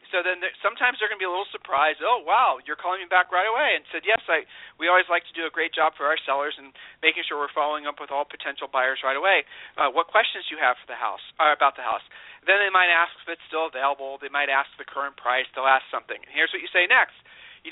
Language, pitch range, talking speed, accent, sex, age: English, 150-195 Hz, 280 wpm, American, male, 40-59